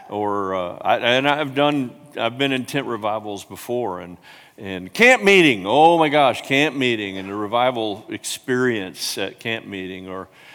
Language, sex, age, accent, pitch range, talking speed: English, male, 50-69, American, 100-130 Hz, 165 wpm